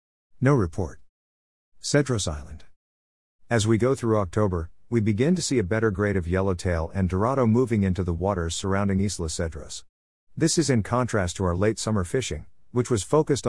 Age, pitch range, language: 50-69, 85-110 Hz, English